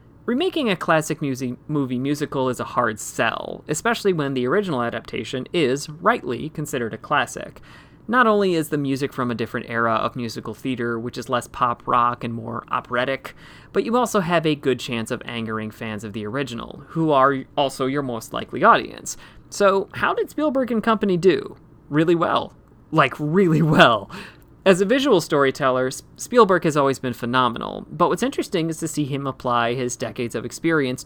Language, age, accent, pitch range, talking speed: English, 30-49, American, 125-175 Hz, 175 wpm